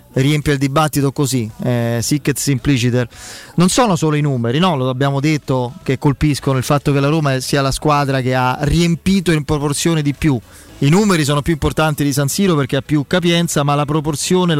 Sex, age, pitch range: male, 30-49, 130-170 Hz